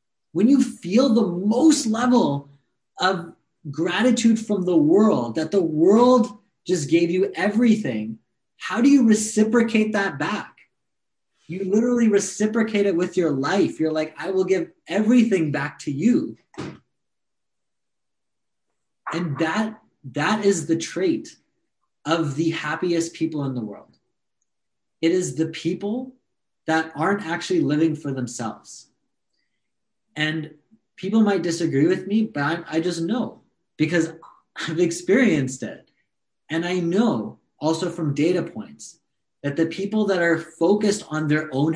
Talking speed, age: 135 wpm, 20-39